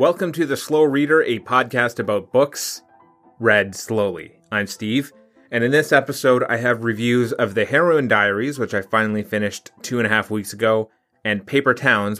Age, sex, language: 30-49, male, English